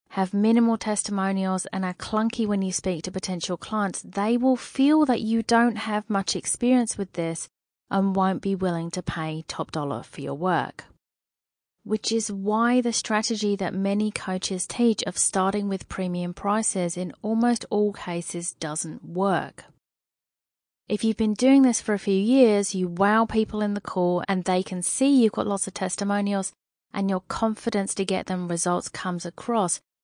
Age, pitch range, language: 30-49, 185-225 Hz, English